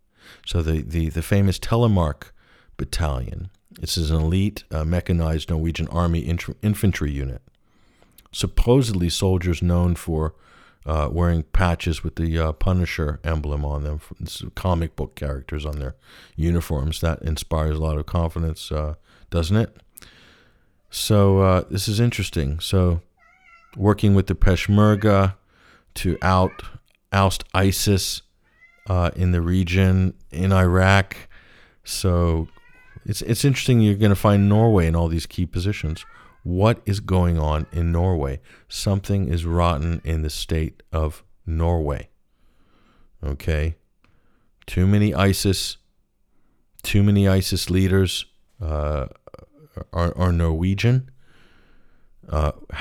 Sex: male